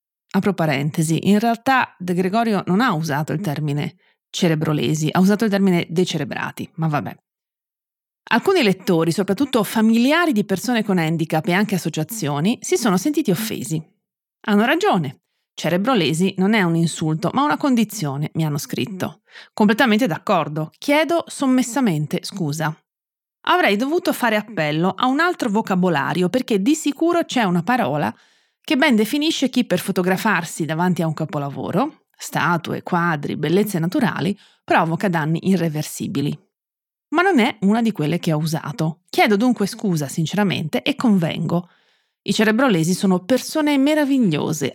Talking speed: 140 wpm